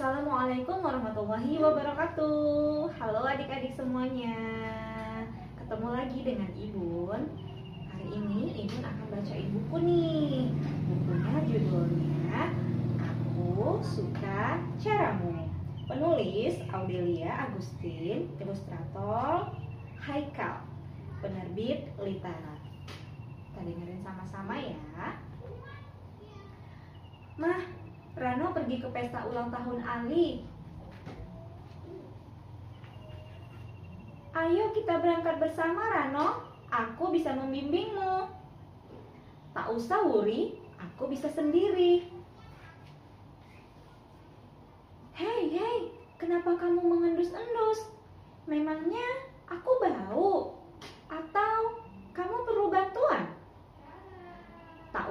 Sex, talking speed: female, 75 wpm